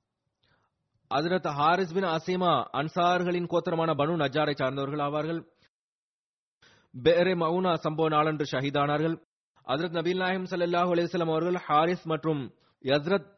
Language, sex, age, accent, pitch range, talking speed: Tamil, male, 30-49, native, 150-180 Hz, 90 wpm